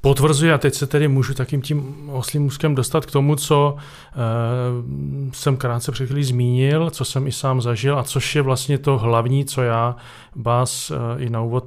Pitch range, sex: 120-140 Hz, male